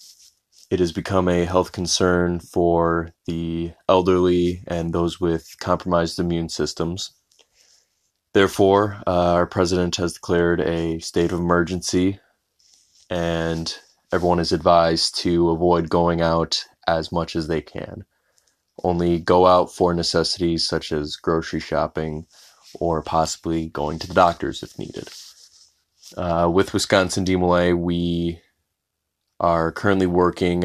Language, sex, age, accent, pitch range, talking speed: English, male, 20-39, American, 85-90 Hz, 125 wpm